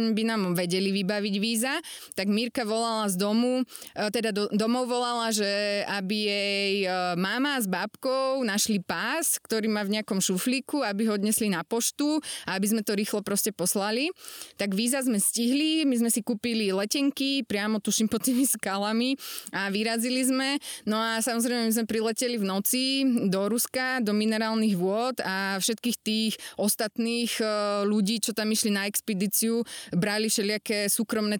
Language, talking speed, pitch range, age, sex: Slovak, 155 wpm, 195-230 Hz, 20-39, female